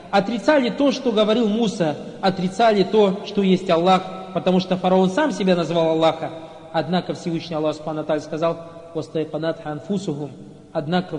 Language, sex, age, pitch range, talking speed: Russian, male, 40-59, 165-210 Hz, 130 wpm